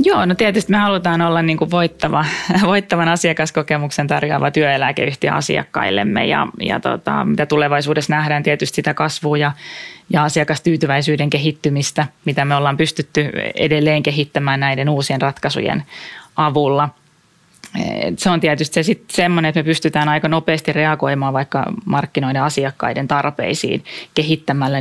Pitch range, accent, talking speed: 140-160 Hz, native, 130 wpm